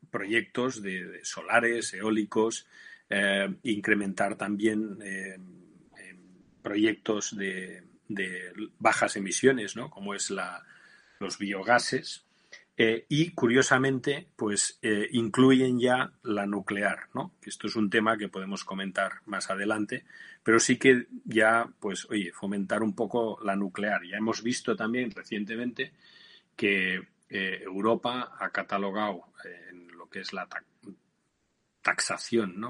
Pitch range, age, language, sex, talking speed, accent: 100-120 Hz, 40-59, Spanish, male, 120 wpm, Spanish